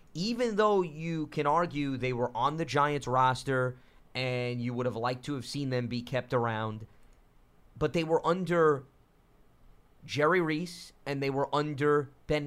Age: 30-49